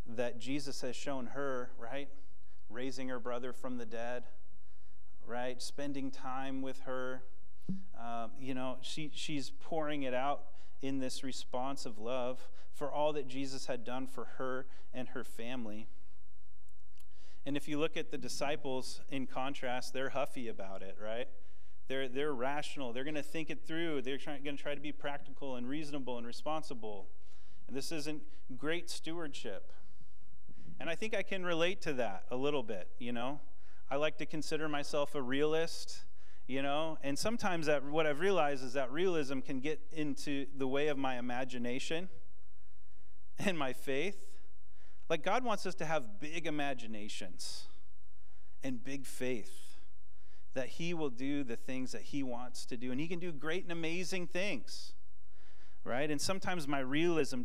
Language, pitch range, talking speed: English, 105-150 Hz, 165 wpm